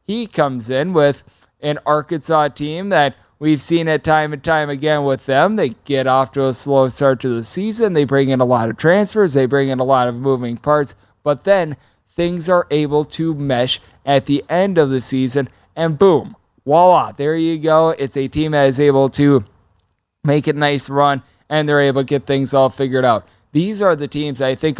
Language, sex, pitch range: English, male, 135-165 Hz